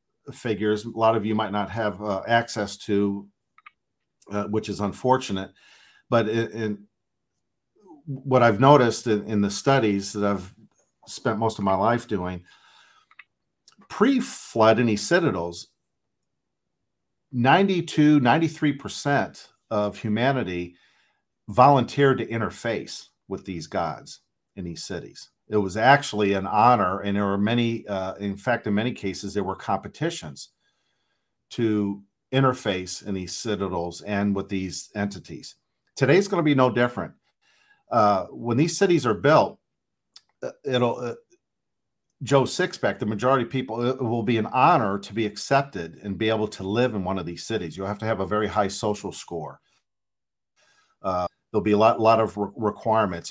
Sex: male